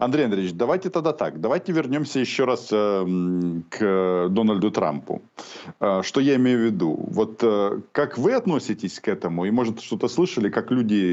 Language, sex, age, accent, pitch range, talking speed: Ukrainian, male, 40-59, native, 95-125 Hz, 175 wpm